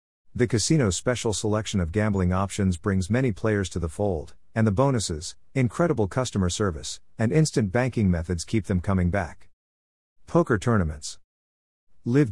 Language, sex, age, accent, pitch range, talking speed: English, male, 50-69, American, 80-115 Hz, 145 wpm